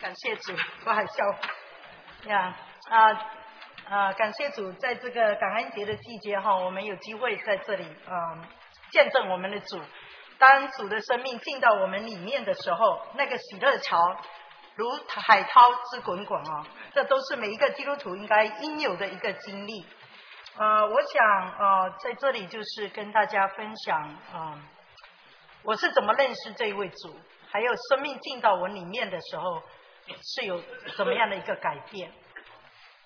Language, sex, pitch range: English, female, 190-260 Hz